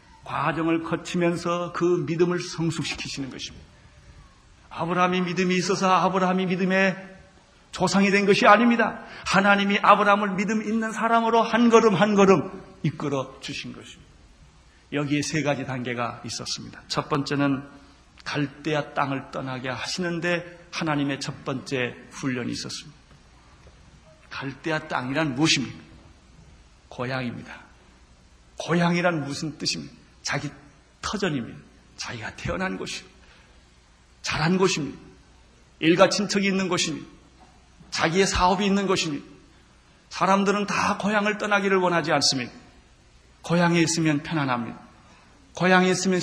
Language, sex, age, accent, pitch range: Korean, male, 40-59, native, 140-195 Hz